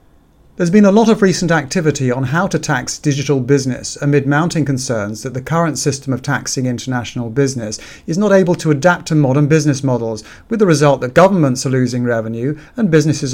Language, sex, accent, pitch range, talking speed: English, male, British, 125-150 Hz, 195 wpm